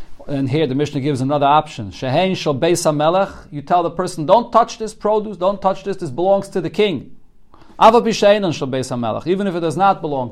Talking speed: 170 wpm